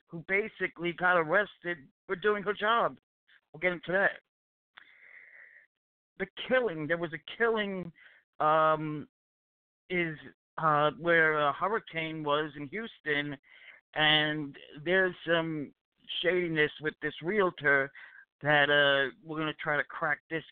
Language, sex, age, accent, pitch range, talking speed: English, male, 60-79, American, 150-180 Hz, 125 wpm